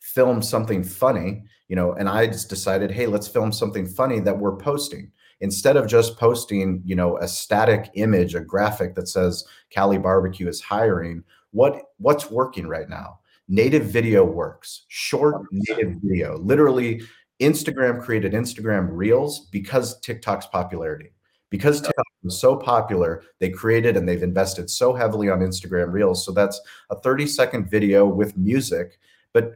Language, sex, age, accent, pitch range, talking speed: English, male, 30-49, American, 95-120 Hz, 155 wpm